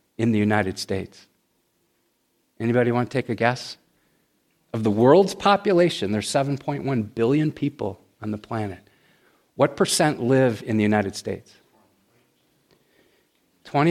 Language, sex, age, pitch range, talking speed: English, male, 50-69, 110-150 Hz, 125 wpm